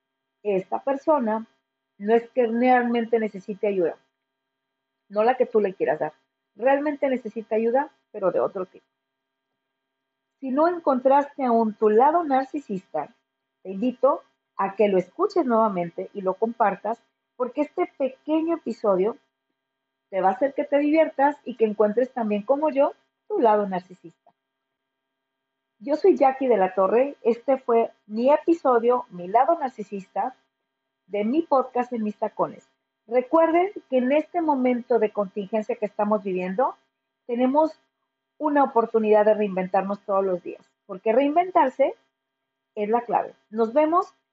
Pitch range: 180-265 Hz